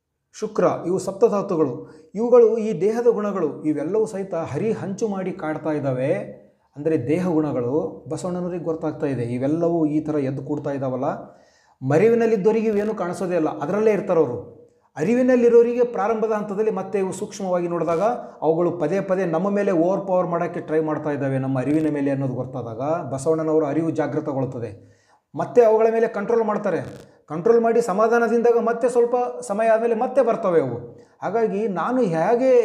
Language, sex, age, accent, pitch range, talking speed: Kannada, male, 30-49, native, 155-210 Hz, 140 wpm